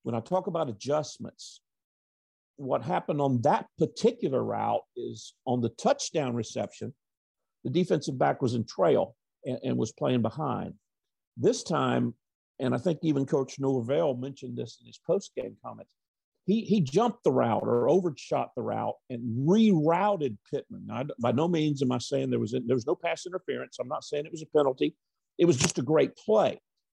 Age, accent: 50-69, American